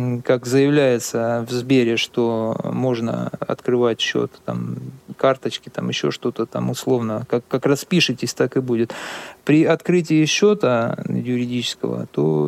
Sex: male